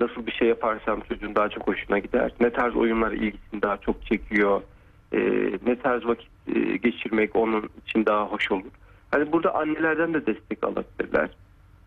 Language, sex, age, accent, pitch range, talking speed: Turkish, male, 40-59, native, 110-155 Hz, 165 wpm